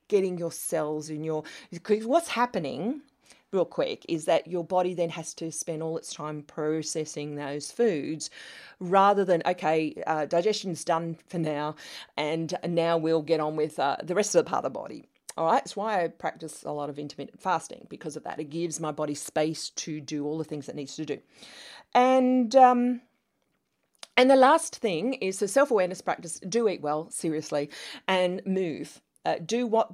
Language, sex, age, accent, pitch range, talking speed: English, female, 40-59, Australian, 160-215 Hz, 190 wpm